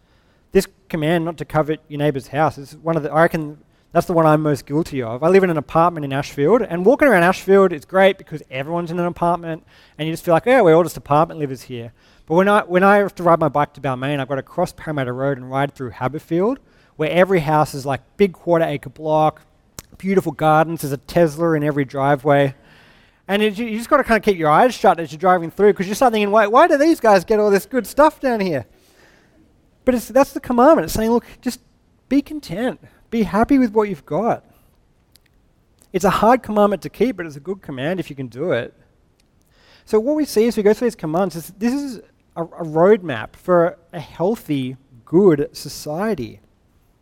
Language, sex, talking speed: English, male, 220 wpm